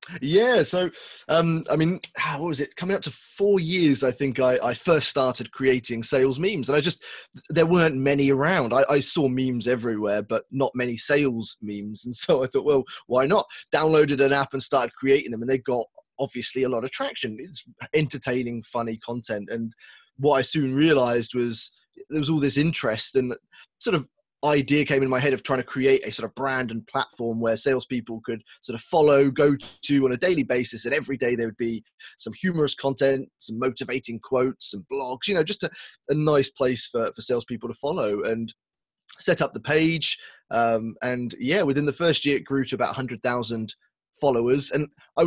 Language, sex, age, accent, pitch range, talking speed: English, male, 20-39, British, 120-145 Hz, 200 wpm